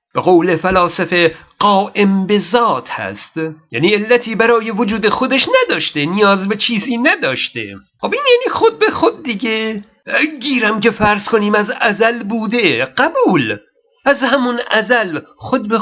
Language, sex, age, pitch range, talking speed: Persian, male, 50-69, 180-240 Hz, 135 wpm